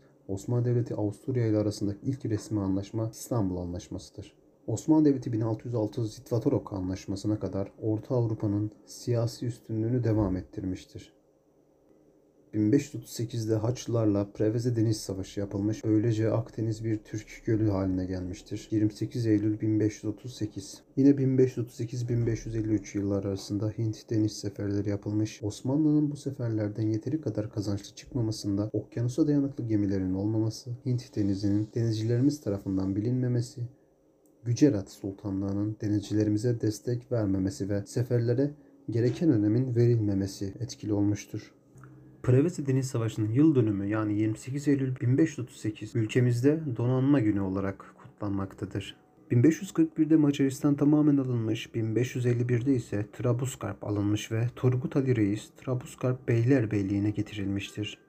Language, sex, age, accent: Turkish, male, 40-59, native